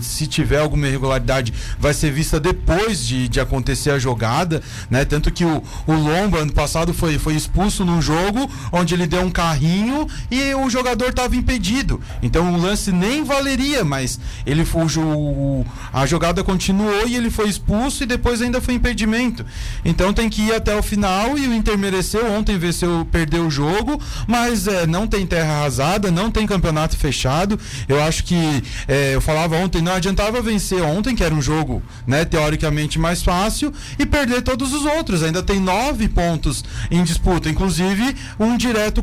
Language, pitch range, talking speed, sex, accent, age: Portuguese, 160-235 Hz, 175 wpm, male, Brazilian, 30-49